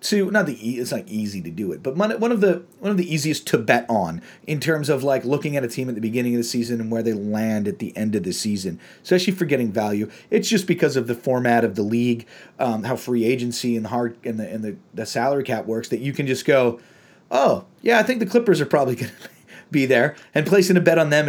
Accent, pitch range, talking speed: American, 125-170 Hz, 270 wpm